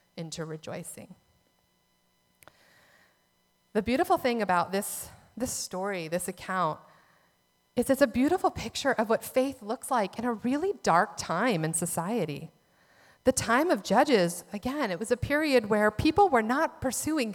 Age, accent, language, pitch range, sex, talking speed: 30-49, American, English, 175-250 Hz, female, 145 wpm